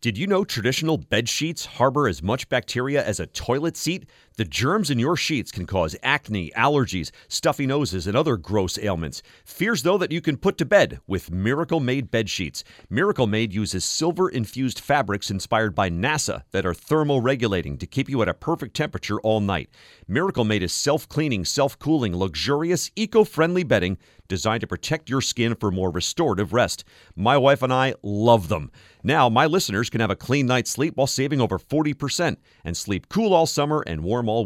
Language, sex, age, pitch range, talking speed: English, male, 40-59, 100-150 Hz, 175 wpm